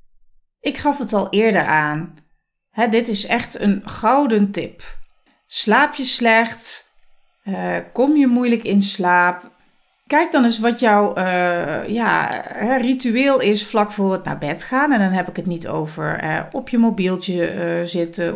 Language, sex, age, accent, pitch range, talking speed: Dutch, female, 40-59, Dutch, 185-245 Hz, 155 wpm